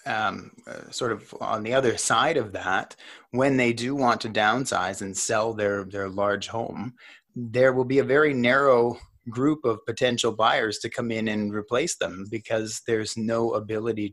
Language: English